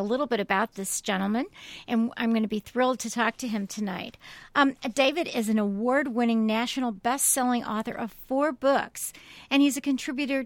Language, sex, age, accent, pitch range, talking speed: English, female, 50-69, American, 205-245 Hz, 185 wpm